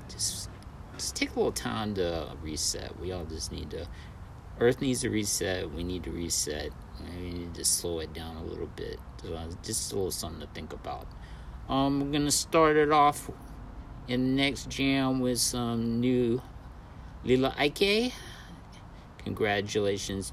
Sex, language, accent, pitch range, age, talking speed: male, English, American, 85-110 Hz, 50-69, 160 wpm